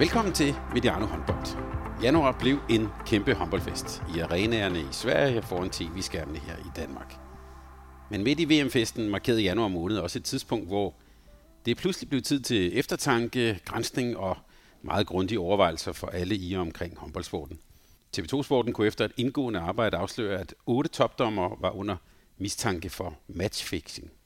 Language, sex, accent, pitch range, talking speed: Danish, male, native, 90-125 Hz, 150 wpm